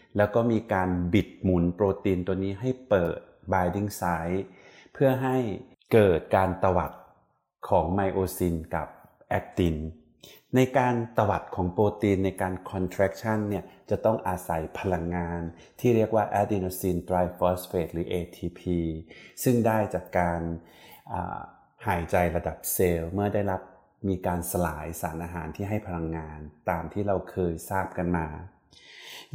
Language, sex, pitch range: Thai, male, 90-105 Hz